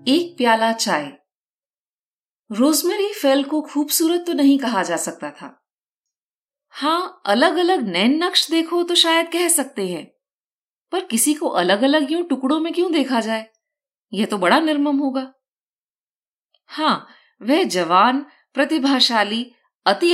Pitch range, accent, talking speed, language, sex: 230-320 Hz, native, 135 wpm, Hindi, female